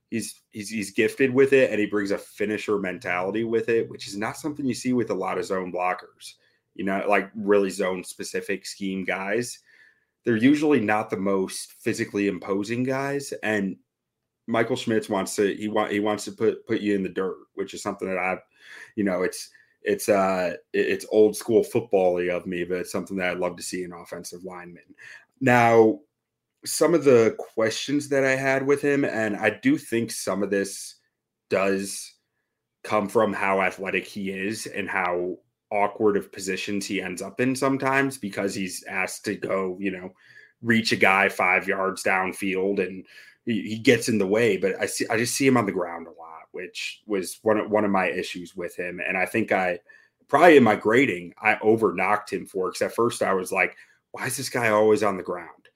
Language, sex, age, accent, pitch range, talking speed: English, male, 30-49, American, 95-130 Hz, 200 wpm